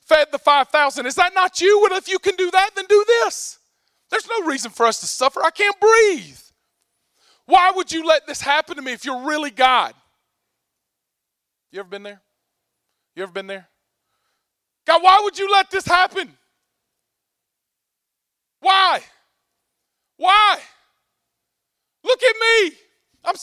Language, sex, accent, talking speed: English, male, American, 150 wpm